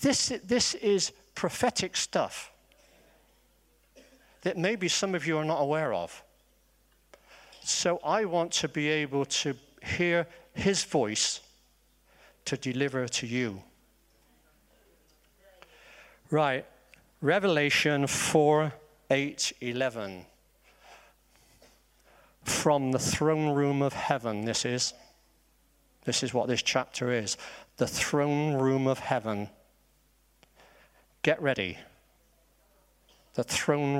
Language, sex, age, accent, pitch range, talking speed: English, male, 50-69, British, 125-155 Hz, 100 wpm